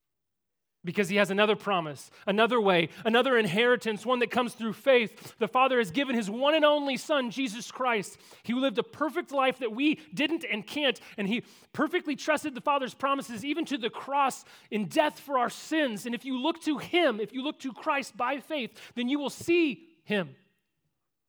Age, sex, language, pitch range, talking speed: 30-49, male, English, 175-275 Hz, 195 wpm